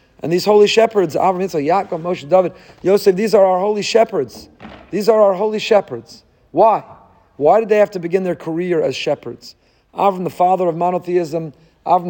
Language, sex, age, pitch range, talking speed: English, male, 40-59, 155-195 Hz, 185 wpm